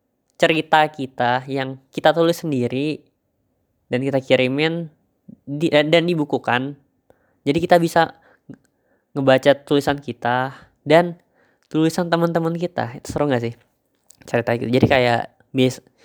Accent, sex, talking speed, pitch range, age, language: native, female, 120 wpm, 120-140 Hz, 20-39, Indonesian